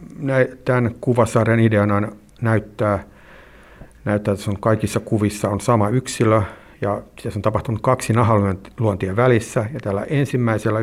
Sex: male